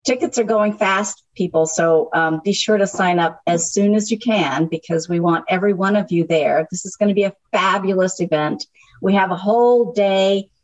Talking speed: 215 wpm